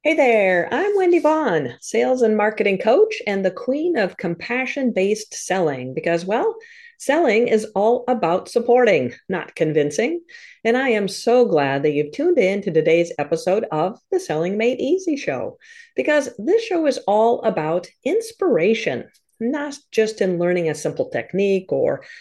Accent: American